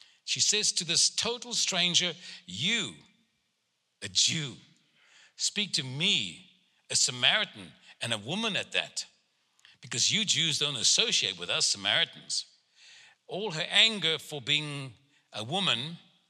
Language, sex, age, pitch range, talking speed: English, male, 60-79, 140-185 Hz, 125 wpm